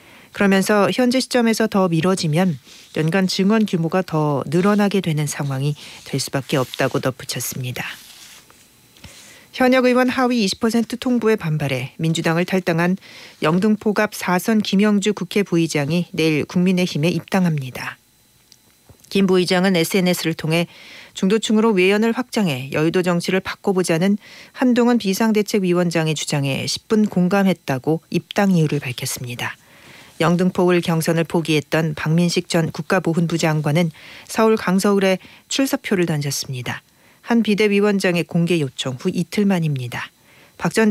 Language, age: Korean, 40-59